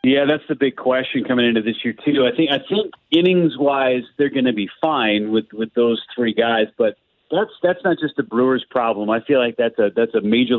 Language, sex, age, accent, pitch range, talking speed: English, male, 40-59, American, 110-140 Hz, 240 wpm